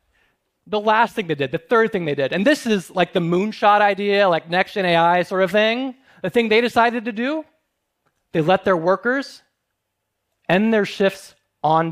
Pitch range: 170-235 Hz